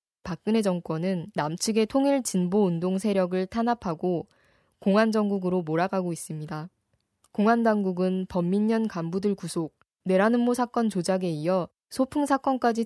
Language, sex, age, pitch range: Korean, female, 20-39, 175-215 Hz